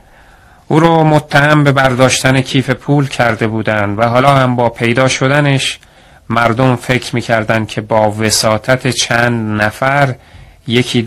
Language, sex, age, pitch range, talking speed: Persian, male, 30-49, 110-130 Hz, 130 wpm